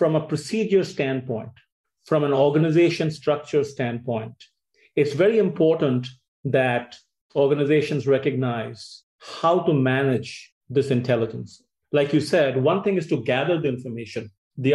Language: English